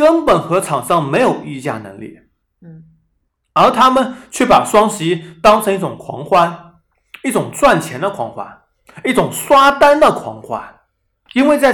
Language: Chinese